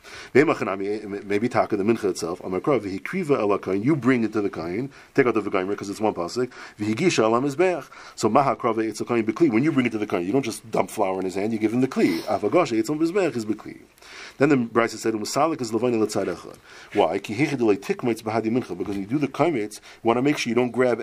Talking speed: 170 wpm